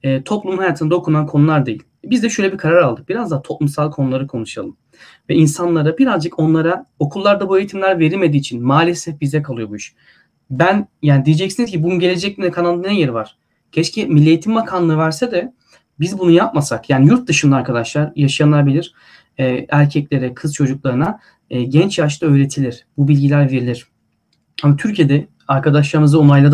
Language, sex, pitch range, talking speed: Turkish, male, 140-175 Hz, 160 wpm